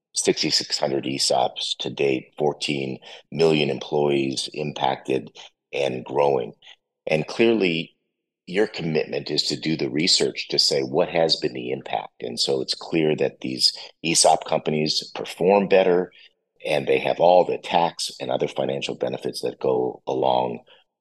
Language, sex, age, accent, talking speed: English, male, 50-69, American, 140 wpm